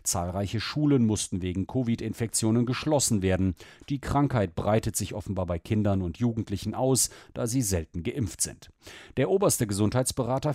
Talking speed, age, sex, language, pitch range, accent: 140 wpm, 40-59, male, German, 95-130 Hz, German